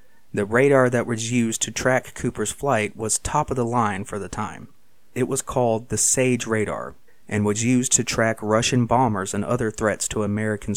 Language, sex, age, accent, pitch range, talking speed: English, male, 30-49, American, 105-125 Hz, 195 wpm